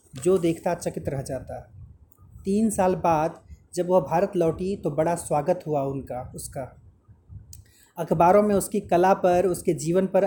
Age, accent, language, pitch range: 30-49, native, Hindi, 130-195 Hz